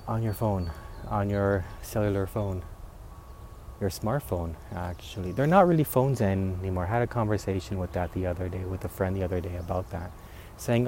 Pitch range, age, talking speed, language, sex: 95-125 Hz, 30-49, 175 wpm, English, male